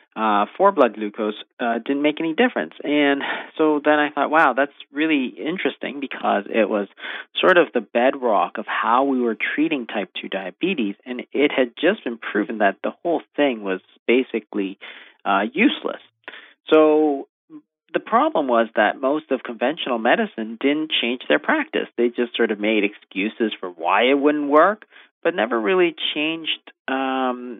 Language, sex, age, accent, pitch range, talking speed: English, male, 40-59, American, 115-145 Hz, 165 wpm